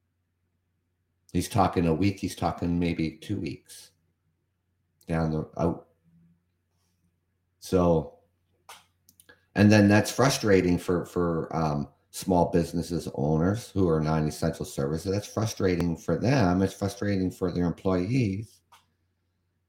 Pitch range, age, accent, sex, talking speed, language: 85-95 Hz, 50-69, American, male, 115 wpm, English